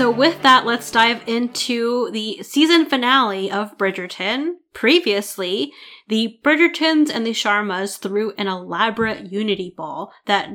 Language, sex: English, female